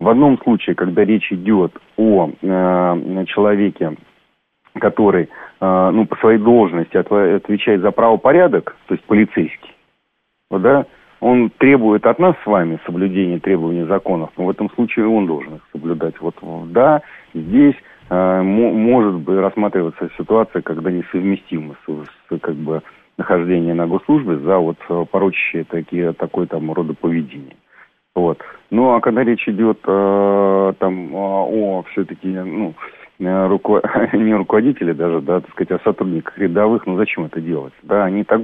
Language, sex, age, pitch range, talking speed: Russian, male, 40-59, 85-110 Hz, 145 wpm